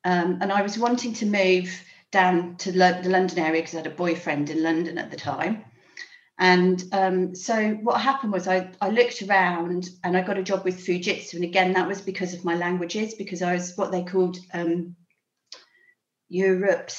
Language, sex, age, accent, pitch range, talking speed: English, female, 40-59, British, 160-185 Hz, 195 wpm